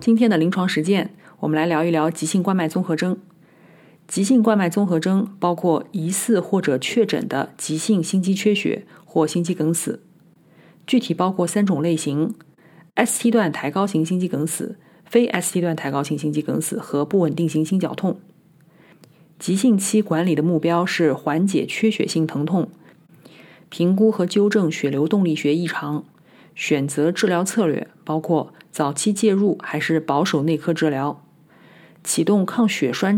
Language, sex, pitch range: Chinese, female, 155-195 Hz